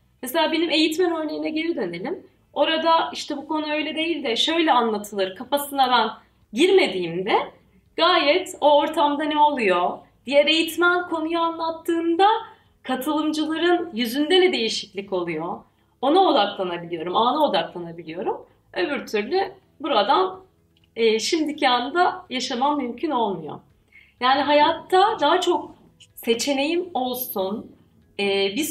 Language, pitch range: Turkish, 225-325 Hz